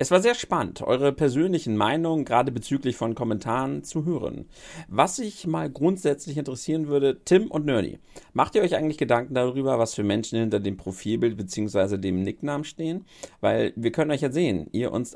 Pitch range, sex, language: 110-140 Hz, male, German